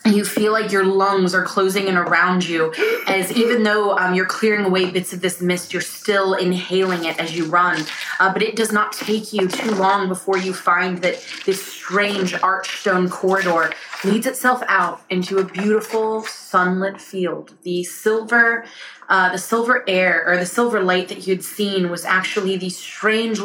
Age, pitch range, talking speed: 20-39, 180-210 Hz, 185 wpm